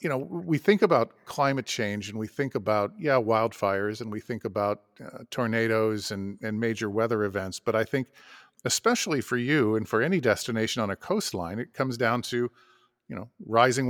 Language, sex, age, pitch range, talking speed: English, male, 50-69, 110-135 Hz, 190 wpm